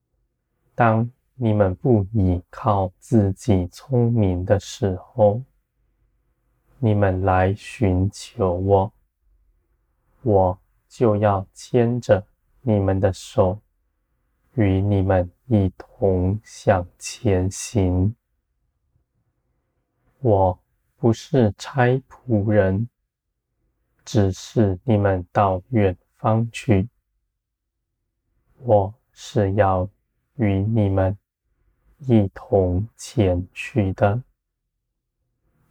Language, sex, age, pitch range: Chinese, male, 20-39, 95-115 Hz